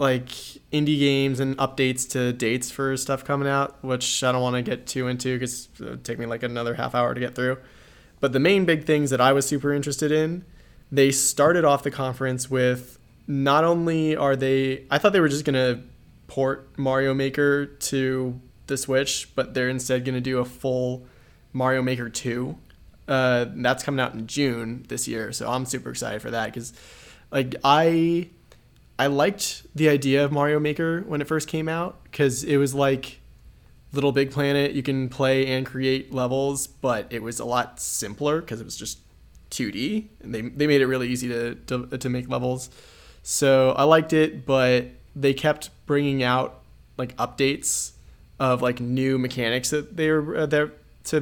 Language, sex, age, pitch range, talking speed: English, male, 20-39, 125-140 Hz, 190 wpm